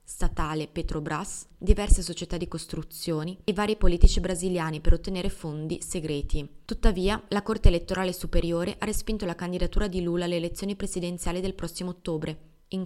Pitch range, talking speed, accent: 170-195 Hz, 150 wpm, native